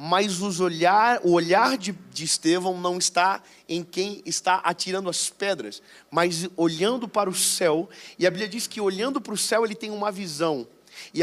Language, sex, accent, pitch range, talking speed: Portuguese, male, Brazilian, 170-205 Hz, 185 wpm